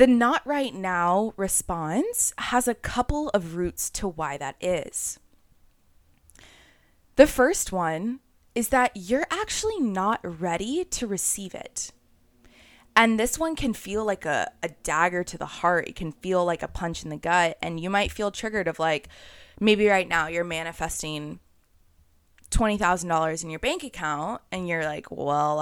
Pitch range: 170-230 Hz